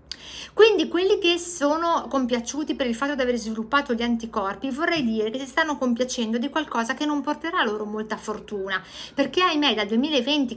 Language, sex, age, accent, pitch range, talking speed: Italian, female, 50-69, native, 220-285 Hz, 175 wpm